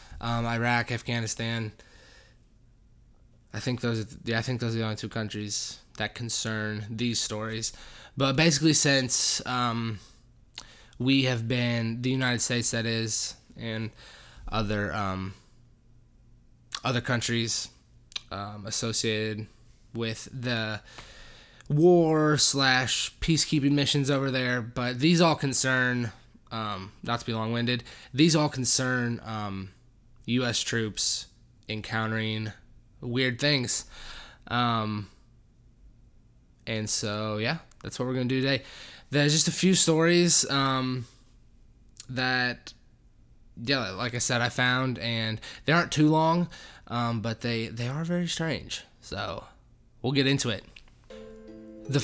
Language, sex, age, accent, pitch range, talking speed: English, male, 20-39, American, 110-135 Hz, 120 wpm